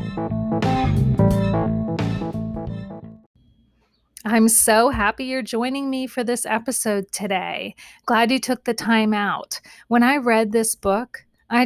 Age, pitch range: 30-49, 205-255 Hz